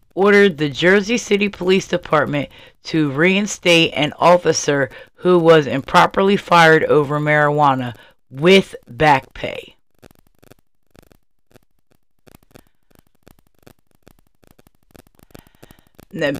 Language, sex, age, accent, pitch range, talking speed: English, female, 30-49, American, 145-190 Hz, 75 wpm